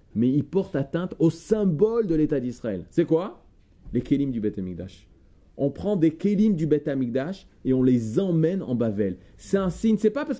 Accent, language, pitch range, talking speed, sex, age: French, French, 140-225 Hz, 210 wpm, male, 30-49